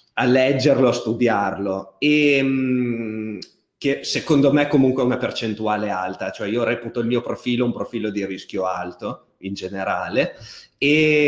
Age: 30-49